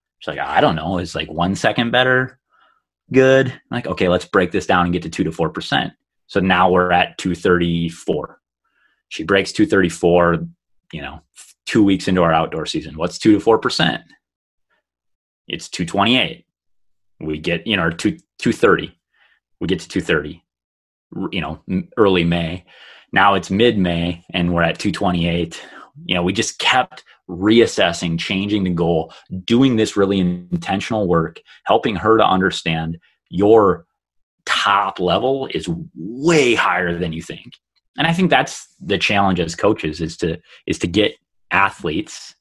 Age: 30-49